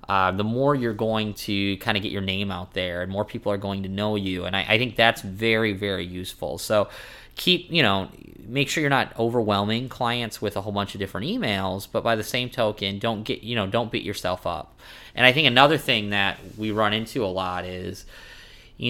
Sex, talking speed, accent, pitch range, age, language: male, 230 wpm, American, 100-115 Hz, 20-39, English